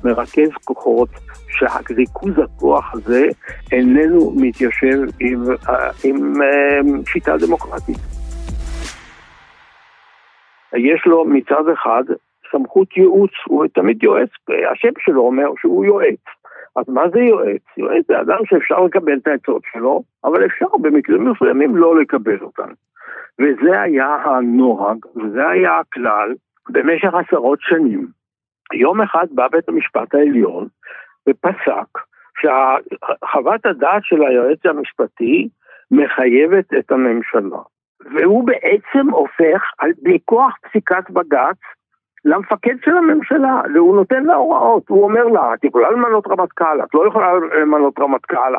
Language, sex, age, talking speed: Hebrew, male, 60-79, 120 wpm